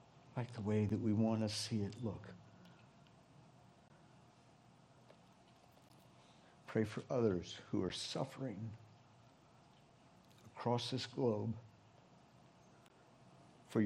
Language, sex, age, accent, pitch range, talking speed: English, male, 60-79, American, 110-125 Hz, 85 wpm